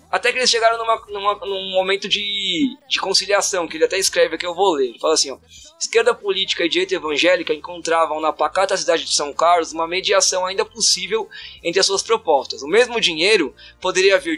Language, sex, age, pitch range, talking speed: Portuguese, male, 20-39, 180-230 Hz, 190 wpm